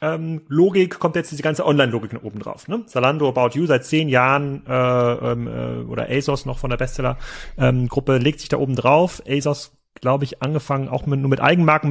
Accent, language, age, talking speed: German, German, 30-49, 200 wpm